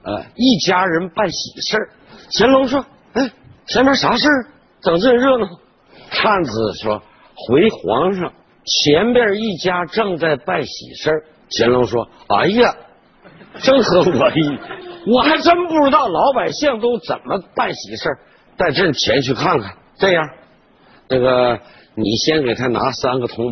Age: 50-69